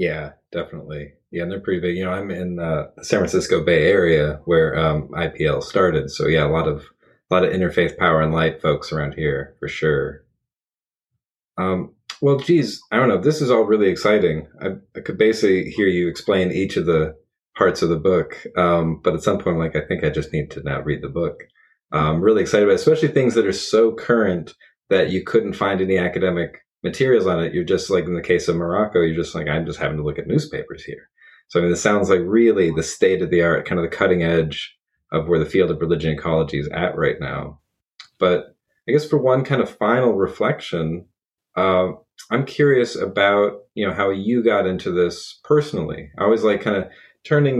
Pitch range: 85-105 Hz